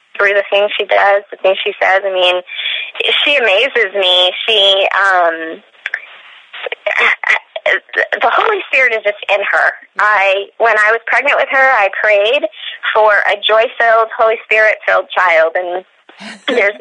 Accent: American